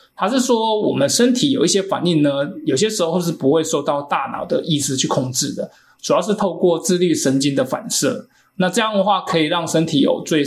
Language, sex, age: Chinese, male, 20-39